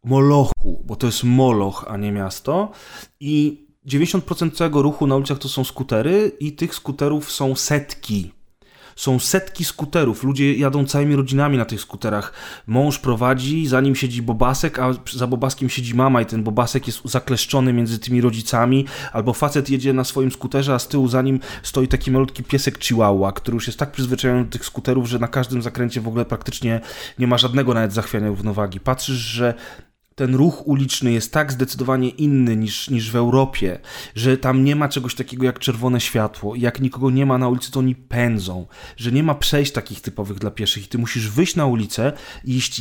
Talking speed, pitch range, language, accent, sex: 190 wpm, 120-145 Hz, Polish, native, male